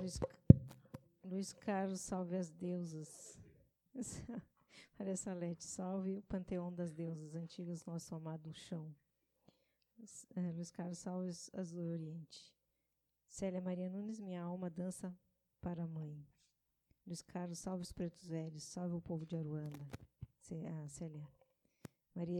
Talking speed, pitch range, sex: 115 wpm, 165-185 Hz, female